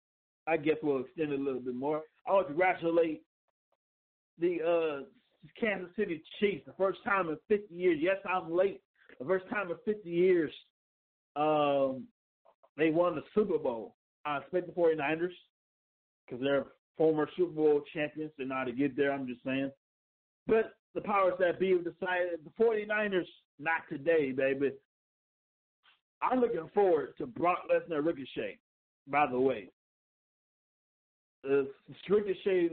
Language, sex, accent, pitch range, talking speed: English, male, American, 150-195 Hz, 145 wpm